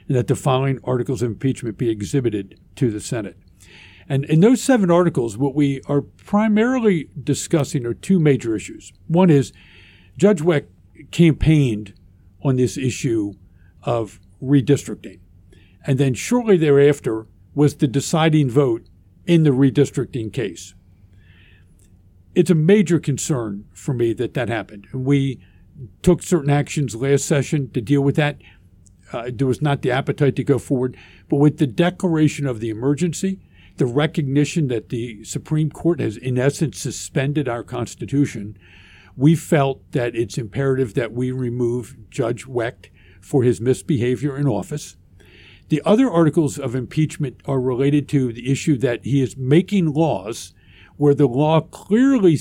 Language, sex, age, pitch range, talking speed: English, male, 50-69, 110-150 Hz, 145 wpm